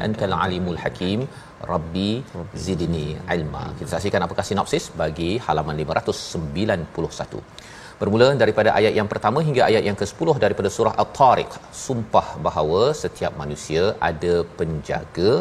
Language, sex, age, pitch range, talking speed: Malayalam, male, 40-59, 90-110 Hz, 120 wpm